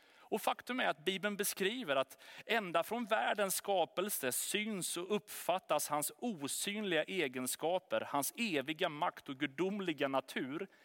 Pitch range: 145-205 Hz